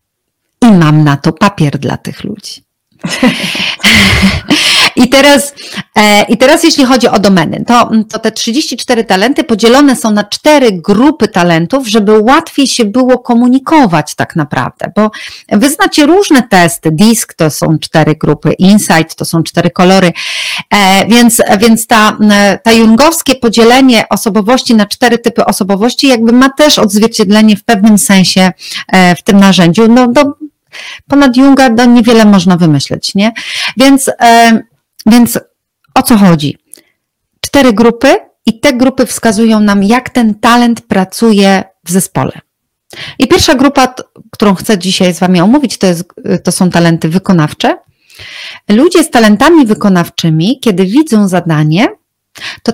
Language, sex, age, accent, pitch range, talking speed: Polish, female, 40-59, native, 185-255 Hz, 135 wpm